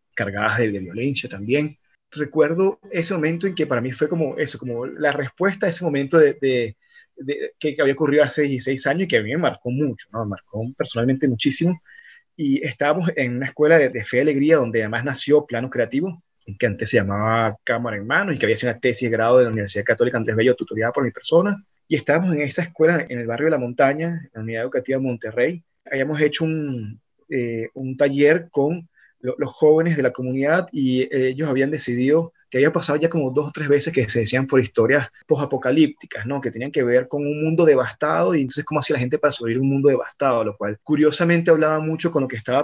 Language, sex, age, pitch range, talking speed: Spanish, male, 20-39, 125-155 Hz, 225 wpm